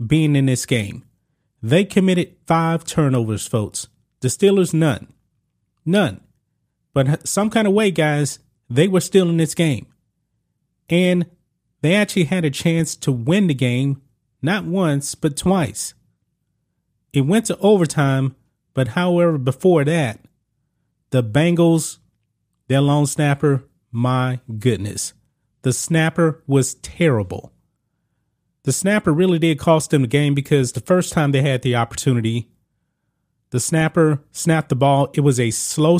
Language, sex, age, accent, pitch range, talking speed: English, male, 30-49, American, 130-165 Hz, 140 wpm